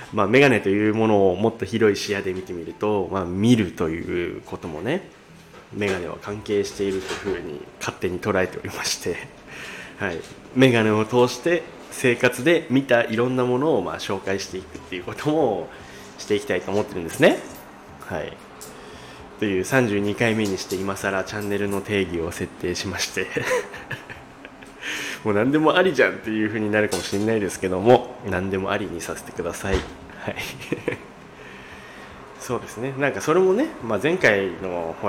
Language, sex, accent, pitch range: Japanese, male, native, 95-125 Hz